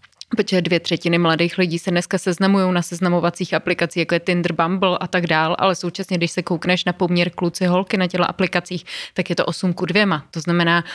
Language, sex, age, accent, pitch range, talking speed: Czech, female, 30-49, native, 170-180 Hz, 210 wpm